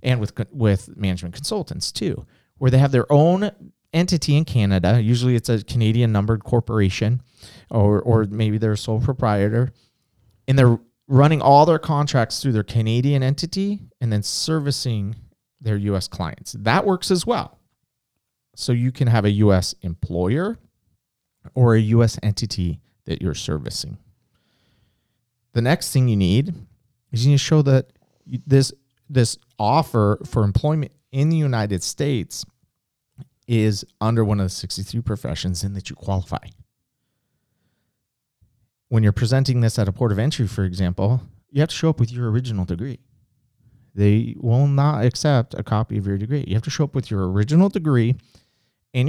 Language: English